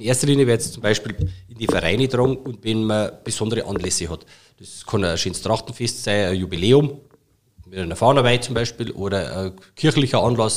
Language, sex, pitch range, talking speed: German, male, 100-125 Hz, 195 wpm